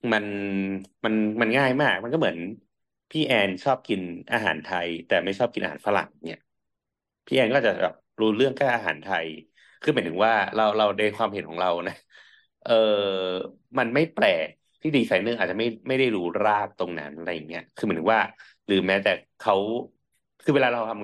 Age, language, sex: 30-49, Thai, male